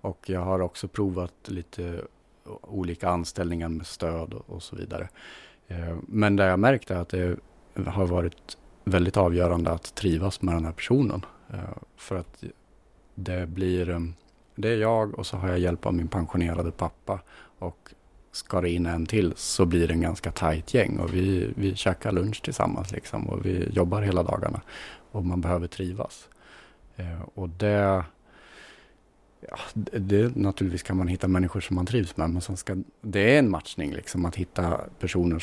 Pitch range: 85-95 Hz